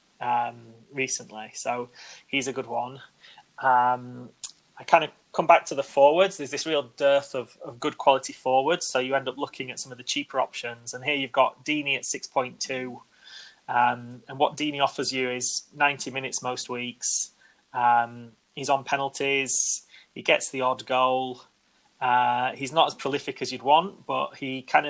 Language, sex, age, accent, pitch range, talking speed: English, male, 20-39, British, 125-145 Hz, 175 wpm